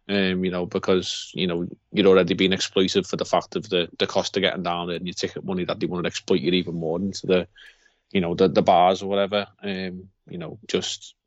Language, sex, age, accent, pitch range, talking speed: English, male, 30-49, British, 95-115 Hz, 245 wpm